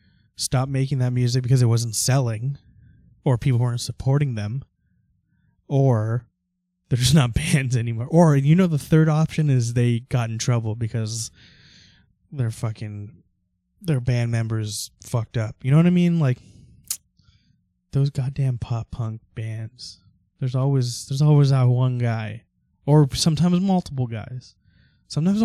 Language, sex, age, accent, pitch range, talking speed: English, male, 20-39, American, 110-140 Hz, 145 wpm